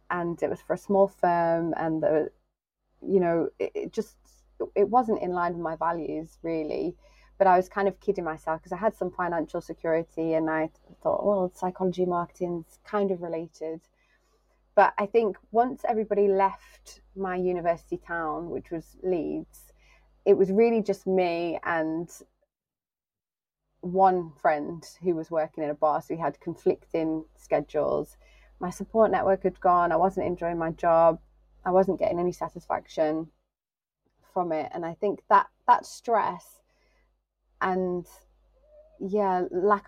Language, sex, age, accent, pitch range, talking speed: English, female, 20-39, British, 165-195 Hz, 150 wpm